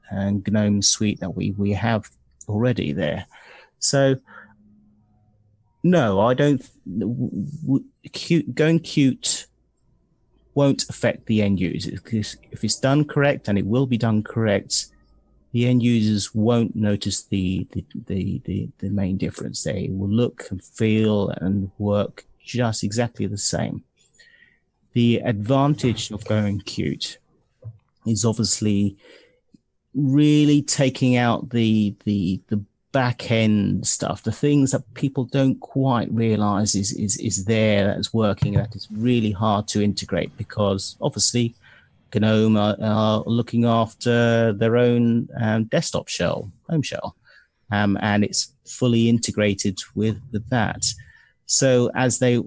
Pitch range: 105-125 Hz